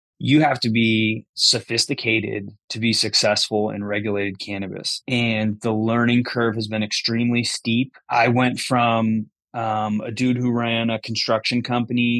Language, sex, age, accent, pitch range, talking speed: English, male, 20-39, American, 110-125 Hz, 150 wpm